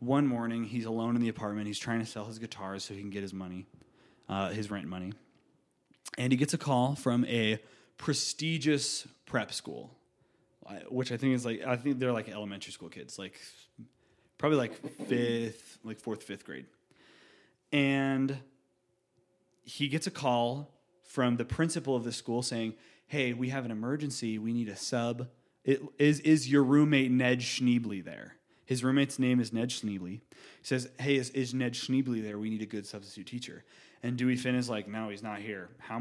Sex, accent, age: male, American, 20-39